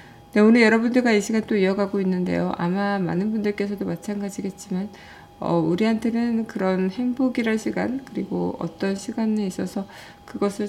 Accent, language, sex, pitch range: native, Korean, female, 180-220 Hz